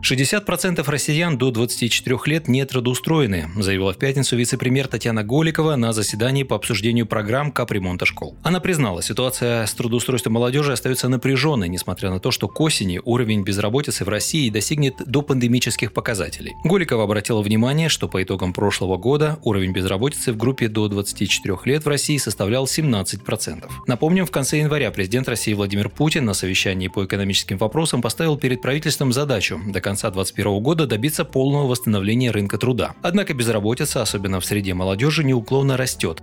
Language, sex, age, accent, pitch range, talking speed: Russian, male, 30-49, native, 105-135 Hz, 160 wpm